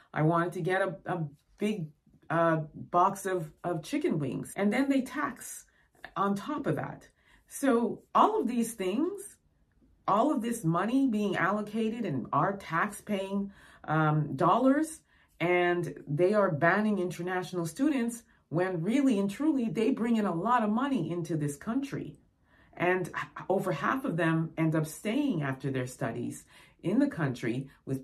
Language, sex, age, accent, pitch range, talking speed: English, female, 30-49, American, 145-205 Hz, 155 wpm